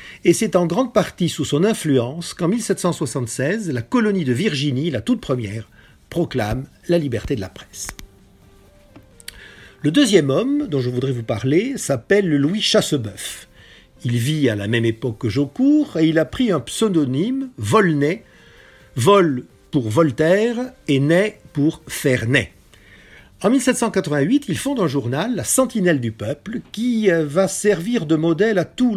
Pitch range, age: 125-195 Hz, 50-69